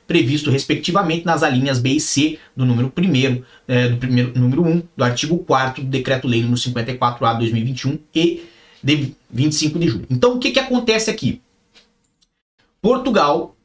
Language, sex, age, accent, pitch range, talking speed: Portuguese, male, 30-49, Brazilian, 140-195 Hz, 150 wpm